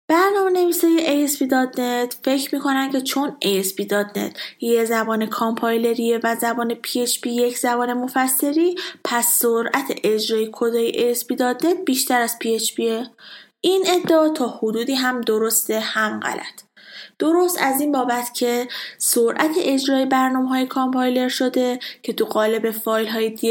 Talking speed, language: 125 wpm, Persian